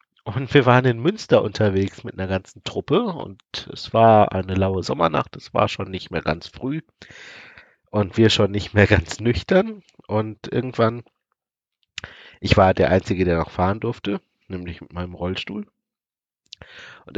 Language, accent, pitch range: German, German, 95-115 Hz